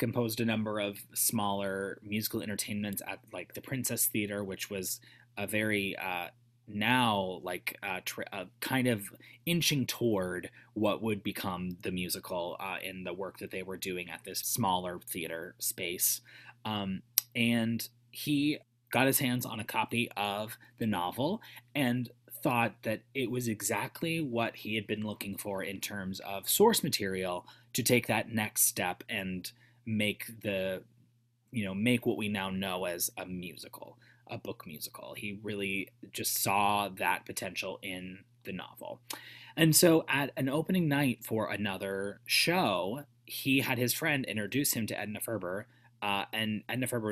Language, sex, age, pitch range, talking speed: English, male, 20-39, 100-120 Hz, 160 wpm